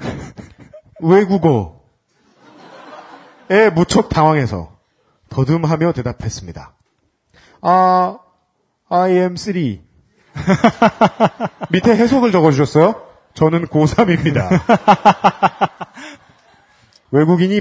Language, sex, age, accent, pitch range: Korean, male, 40-59, native, 155-210 Hz